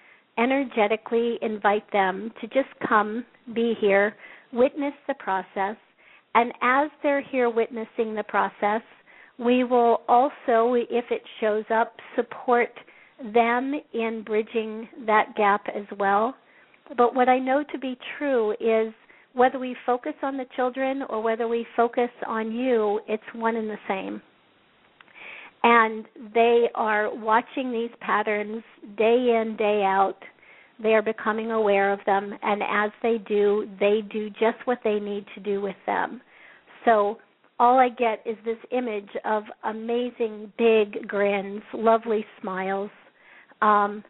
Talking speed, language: 140 wpm, English